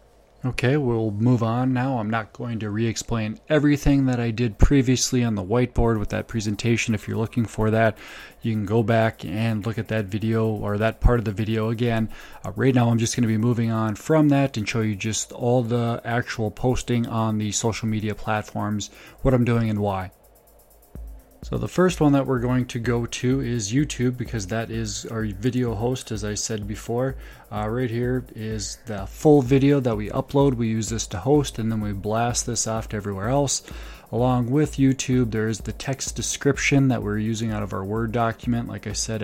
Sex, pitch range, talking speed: male, 110-125 Hz, 210 wpm